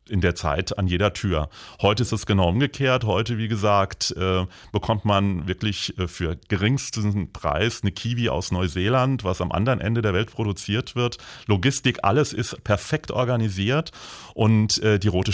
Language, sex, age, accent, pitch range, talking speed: German, male, 30-49, German, 95-120 Hz, 155 wpm